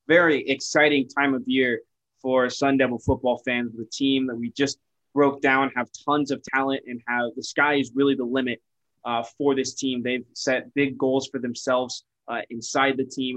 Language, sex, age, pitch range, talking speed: English, male, 20-39, 120-140 Hz, 190 wpm